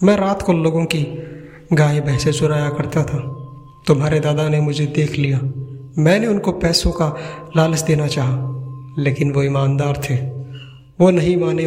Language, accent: Hindi, native